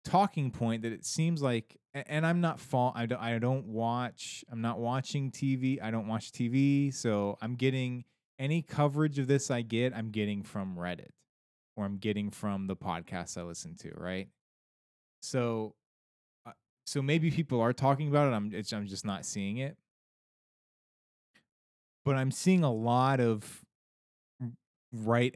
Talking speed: 160 wpm